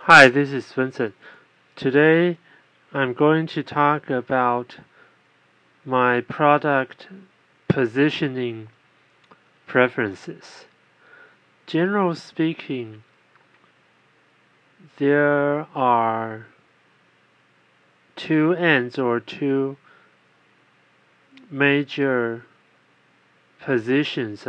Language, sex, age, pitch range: Chinese, male, 30-49, 110-145 Hz